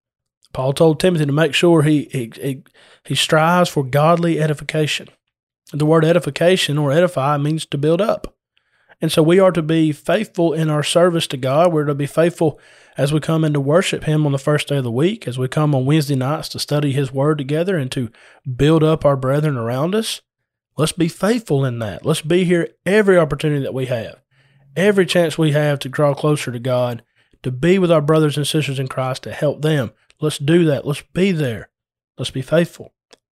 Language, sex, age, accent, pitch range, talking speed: English, male, 30-49, American, 130-160 Hz, 205 wpm